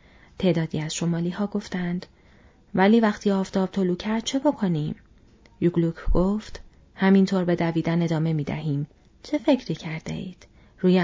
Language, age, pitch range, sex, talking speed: Persian, 30-49, 170-210 Hz, female, 135 wpm